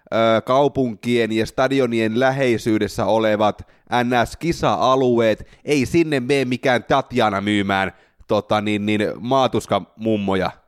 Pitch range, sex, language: 105-140 Hz, male, Finnish